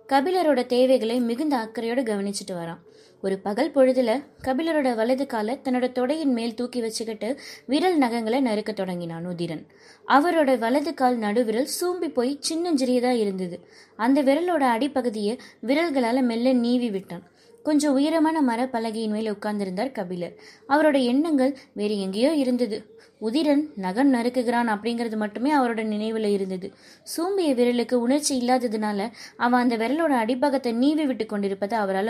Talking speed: 125 wpm